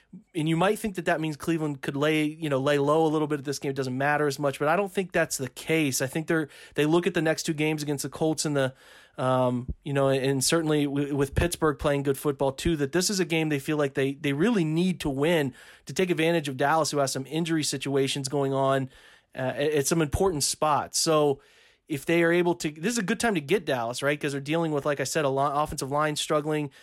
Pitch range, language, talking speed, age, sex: 140-165 Hz, English, 260 wpm, 30-49, male